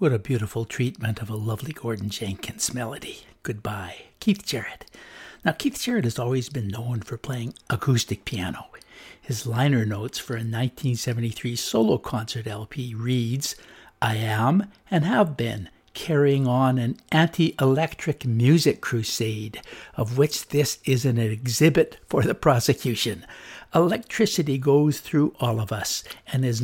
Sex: male